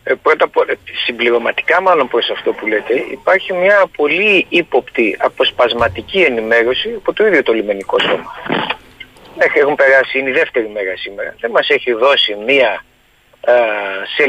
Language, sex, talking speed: Greek, male, 140 wpm